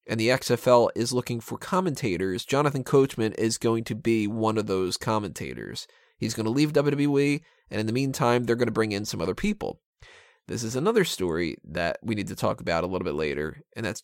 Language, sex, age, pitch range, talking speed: English, male, 20-39, 115-145 Hz, 215 wpm